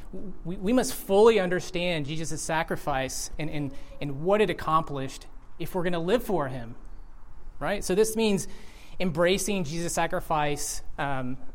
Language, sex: English, male